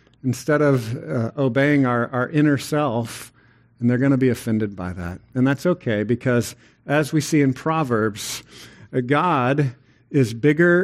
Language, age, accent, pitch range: English, 50-69, American, 125-175 Hz